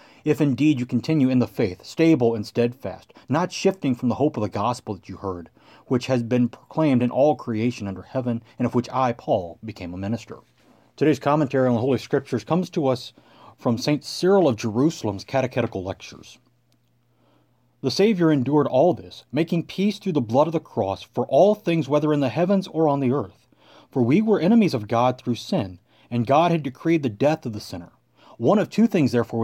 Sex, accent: male, American